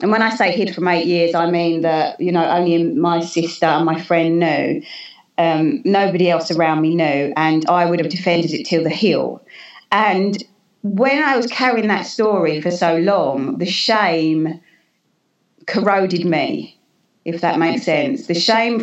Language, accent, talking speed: English, British, 175 wpm